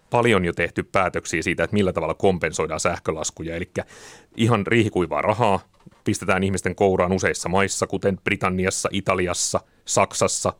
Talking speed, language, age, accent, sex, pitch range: 130 wpm, Finnish, 30-49, native, male, 90-105 Hz